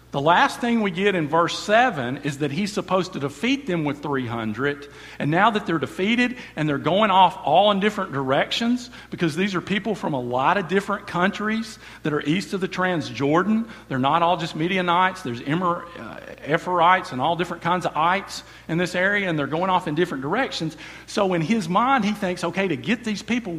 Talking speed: 210 wpm